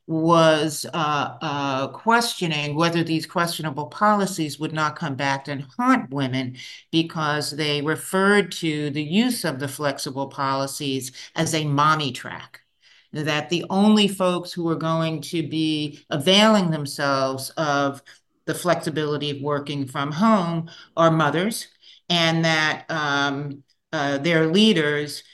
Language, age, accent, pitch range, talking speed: English, 50-69, American, 140-170 Hz, 130 wpm